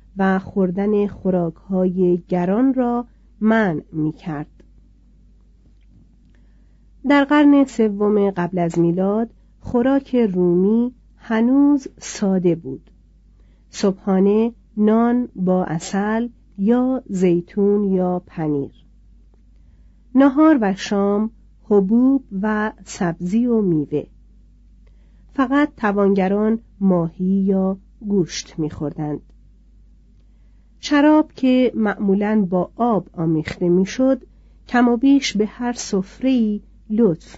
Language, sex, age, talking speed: Persian, female, 40-59, 85 wpm